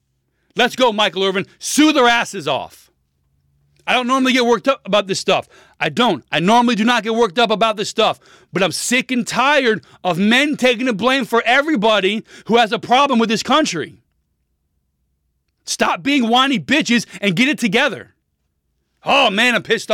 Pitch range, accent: 185-240 Hz, American